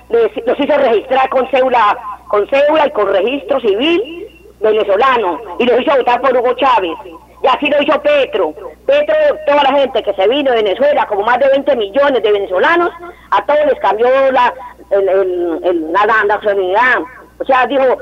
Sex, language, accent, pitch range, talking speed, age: female, Spanish, American, 240-310 Hz, 180 wpm, 40-59